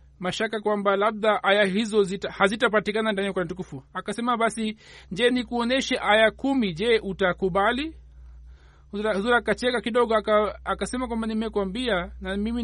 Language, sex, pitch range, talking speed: Swahili, male, 185-220 Hz, 125 wpm